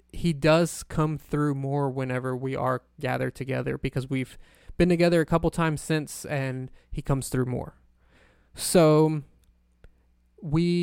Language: English